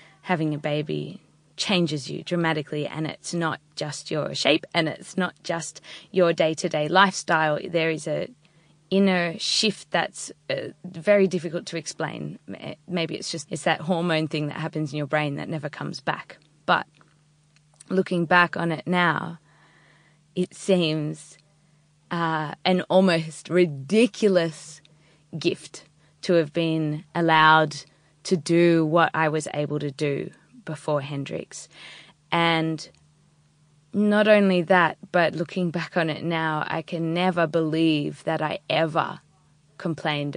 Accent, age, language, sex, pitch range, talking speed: Australian, 20-39, English, female, 155-180 Hz, 135 wpm